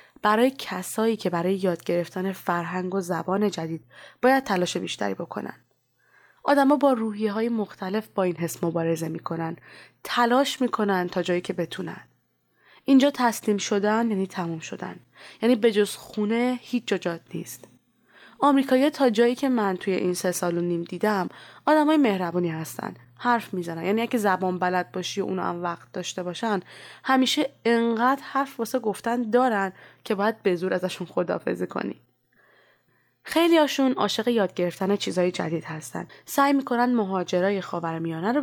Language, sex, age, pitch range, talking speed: Persian, female, 20-39, 180-235 Hz, 150 wpm